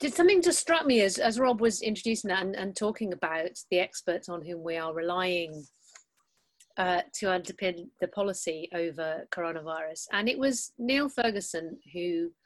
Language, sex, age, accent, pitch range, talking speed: English, female, 40-59, British, 170-230 Hz, 170 wpm